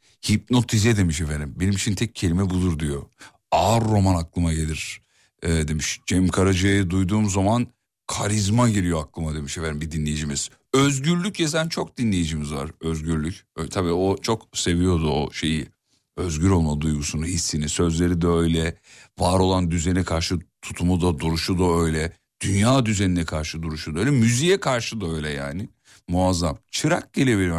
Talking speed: 150 wpm